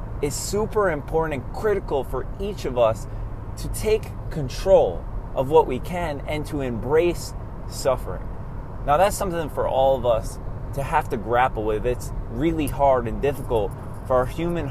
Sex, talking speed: male, 165 wpm